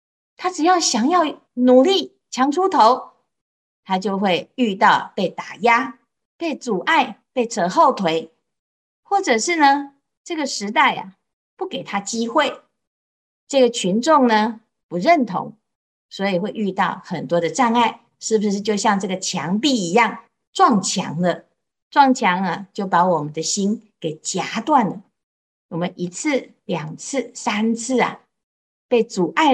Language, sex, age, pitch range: Chinese, female, 50-69, 180-260 Hz